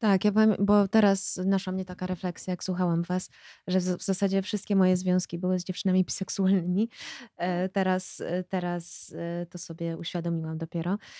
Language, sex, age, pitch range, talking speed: Polish, female, 20-39, 180-195 Hz, 140 wpm